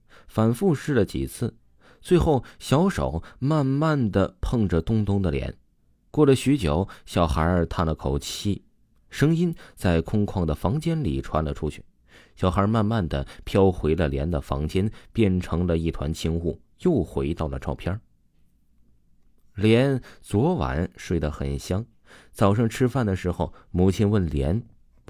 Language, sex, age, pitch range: Chinese, male, 30-49, 75-110 Hz